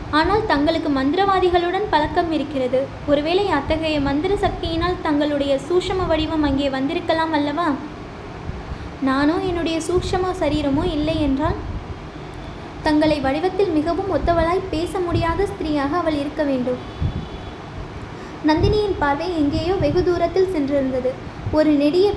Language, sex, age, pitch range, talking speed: Tamil, female, 20-39, 290-355 Hz, 105 wpm